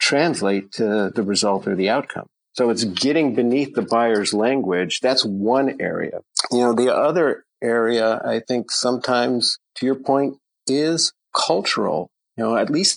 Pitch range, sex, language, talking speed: 105-135 Hz, male, English, 155 wpm